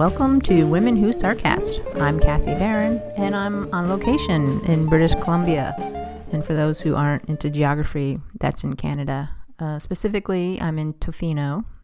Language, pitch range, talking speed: English, 150-170 Hz, 150 wpm